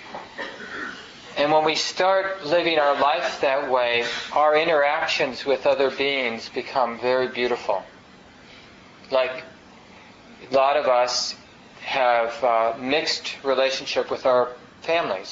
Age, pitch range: 40-59, 125-145 Hz